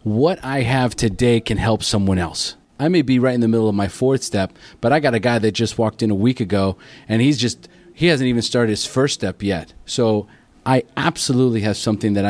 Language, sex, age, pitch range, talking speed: English, male, 30-49, 105-130 Hz, 230 wpm